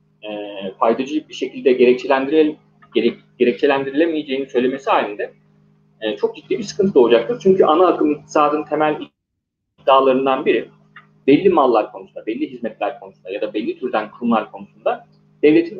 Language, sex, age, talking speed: Turkish, male, 40-59, 130 wpm